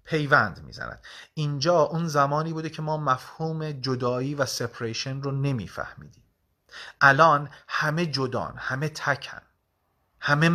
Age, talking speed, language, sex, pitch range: 30-49, 115 wpm, Persian, male, 120-165 Hz